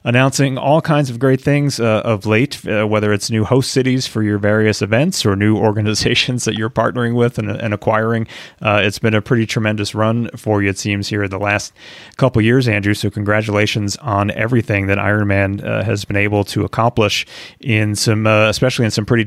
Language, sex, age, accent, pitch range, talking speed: English, male, 30-49, American, 105-120 Hz, 200 wpm